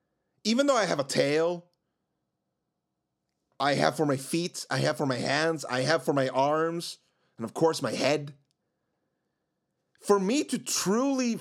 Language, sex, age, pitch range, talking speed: English, male, 30-49, 160-245 Hz, 160 wpm